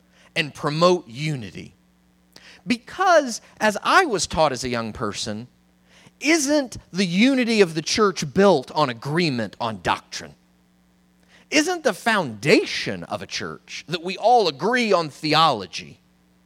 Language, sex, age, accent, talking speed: English, male, 30-49, American, 130 wpm